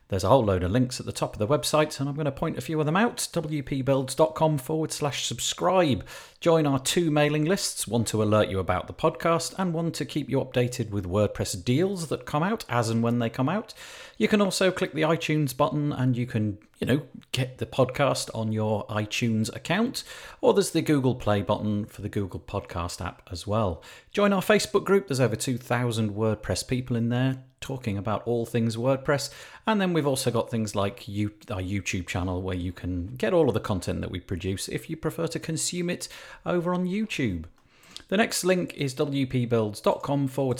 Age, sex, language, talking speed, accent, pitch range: 40-59, male, English, 205 wpm, British, 110-155 Hz